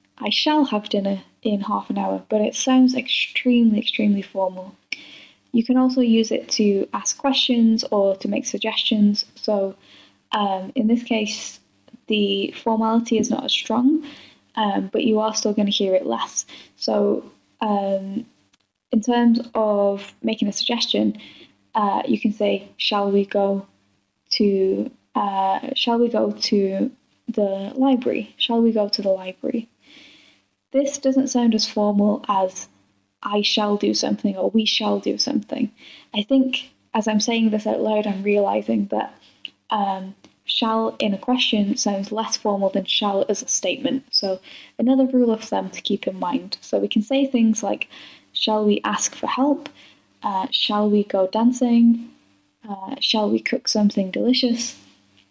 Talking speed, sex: 155 wpm, female